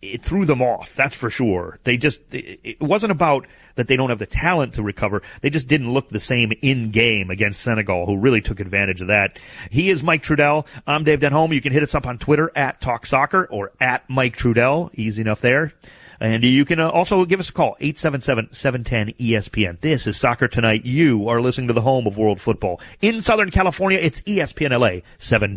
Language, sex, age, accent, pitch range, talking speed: English, male, 40-59, American, 110-145 Hz, 220 wpm